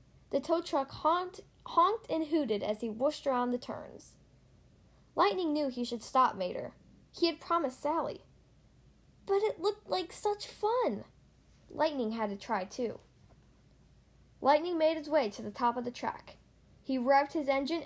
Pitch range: 240-330 Hz